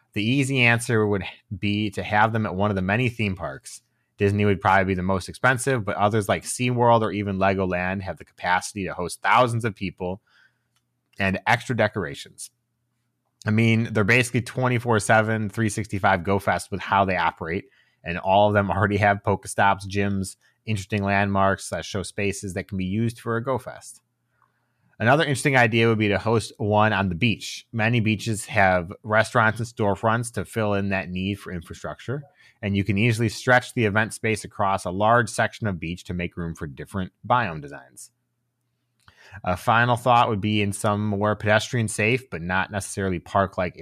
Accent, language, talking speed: American, English, 180 wpm